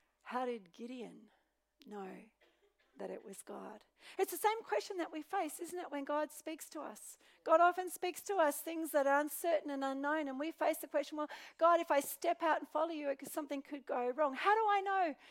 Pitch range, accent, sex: 260-335 Hz, Australian, female